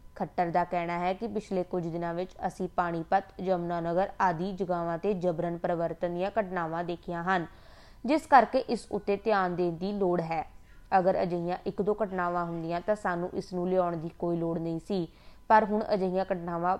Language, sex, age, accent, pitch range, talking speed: Hindi, female, 20-39, native, 175-200 Hz, 105 wpm